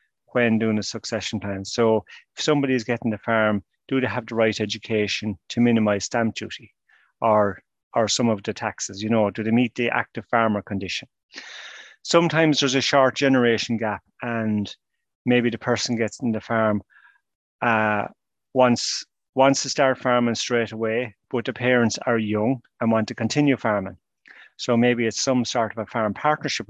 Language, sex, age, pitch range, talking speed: English, male, 30-49, 110-125 Hz, 175 wpm